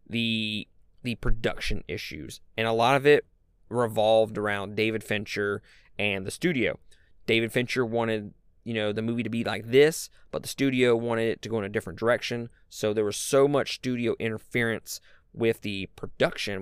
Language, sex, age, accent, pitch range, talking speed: English, male, 20-39, American, 100-125 Hz, 175 wpm